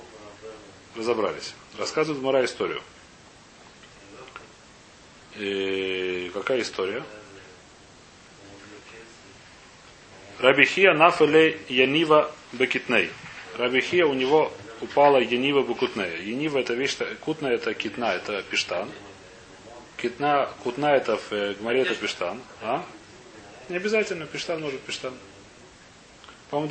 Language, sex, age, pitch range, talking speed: Russian, male, 30-49, 105-150 Hz, 85 wpm